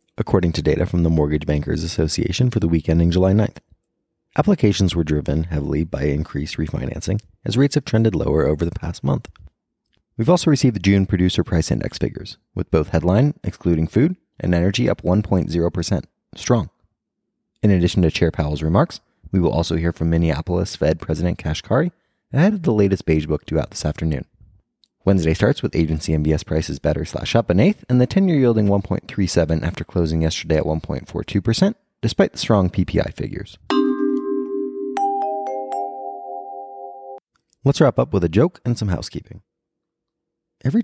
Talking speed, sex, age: 160 wpm, male, 30-49